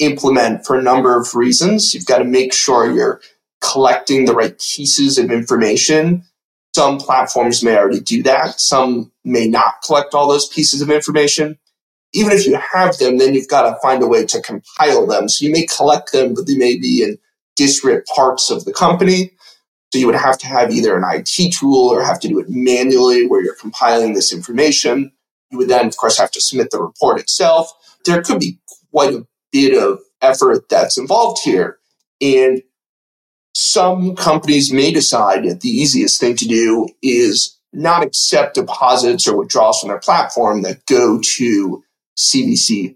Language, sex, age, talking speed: English, male, 30-49, 180 wpm